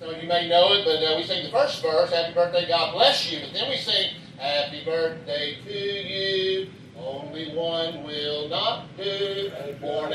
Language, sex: English, male